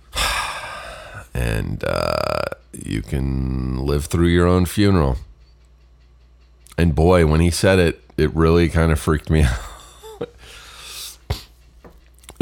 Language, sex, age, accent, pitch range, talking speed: English, male, 40-59, American, 65-85 Hz, 105 wpm